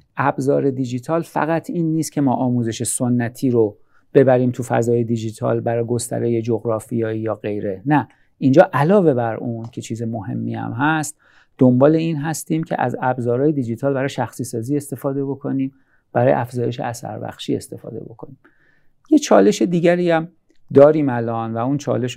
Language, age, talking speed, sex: Persian, 50-69, 150 wpm, male